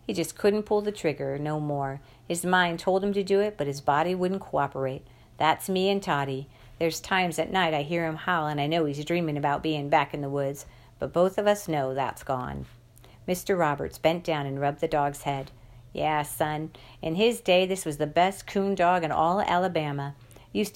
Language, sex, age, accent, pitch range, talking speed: English, female, 50-69, American, 140-180 Hz, 215 wpm